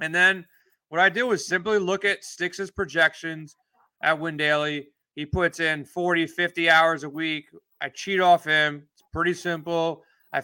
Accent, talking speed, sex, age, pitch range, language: American, 165 wpm, male, 30-49, 160-190 Hz, English